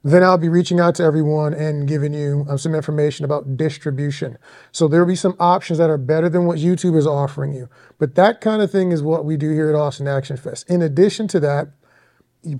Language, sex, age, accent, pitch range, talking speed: English, male, 30-49, American, 150-180 Hz, 225 wpm